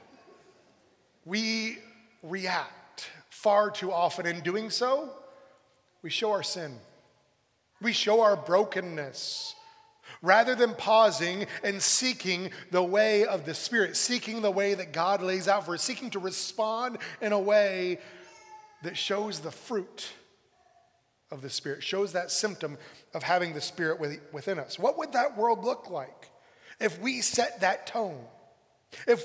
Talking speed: 140 wpm